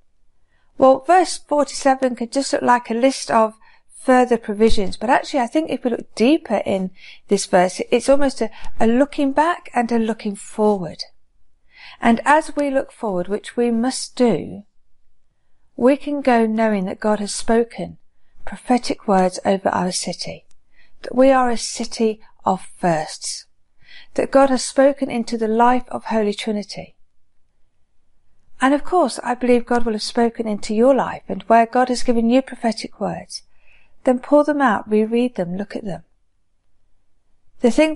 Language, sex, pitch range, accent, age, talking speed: English, female, 195-255 Hz, British, 50-69, 165 wpm